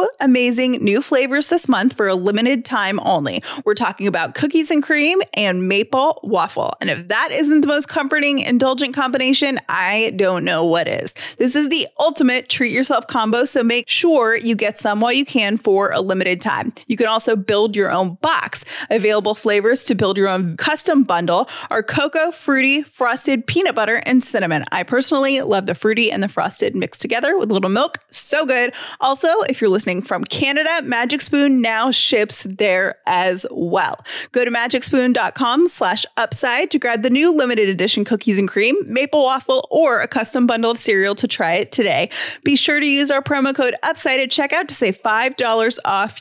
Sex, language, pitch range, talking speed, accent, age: female, English, 215-285 Hz, 190 wpm, American, 30-49